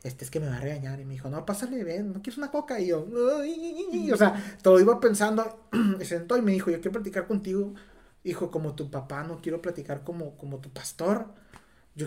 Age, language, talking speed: 30-49, Spanish, 240 wpm